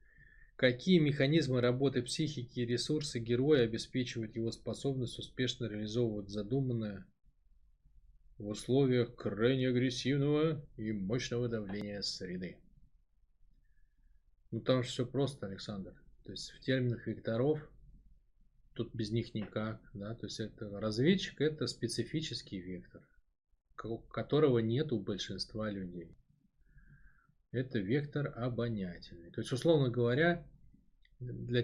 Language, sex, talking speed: Russian, male, 105 wpm